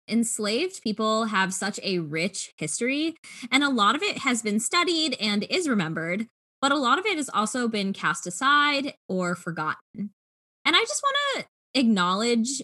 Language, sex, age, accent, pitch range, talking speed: English, female, 10-29, American, 185-250 Hz, 170 wpm